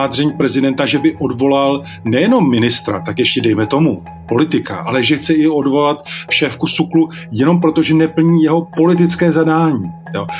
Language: Czech